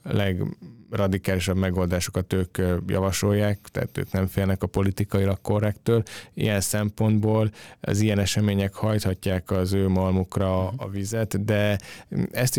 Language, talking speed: Hungarian, 120 wpm